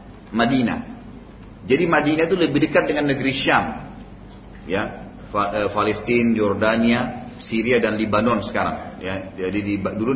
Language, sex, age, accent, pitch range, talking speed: Indonesian, male, 30-49, native, 120-175 Hz, 125 wpm